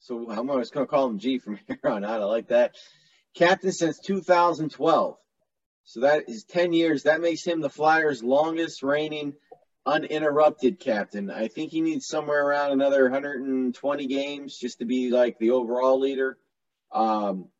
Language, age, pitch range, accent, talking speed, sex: English, 30-49, 120-150 Hz, American, 165 wpm, male